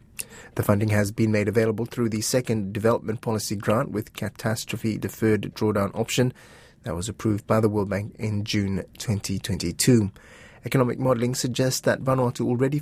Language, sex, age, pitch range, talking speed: English, male, 30-49, 105-125 Hz, 155 wpm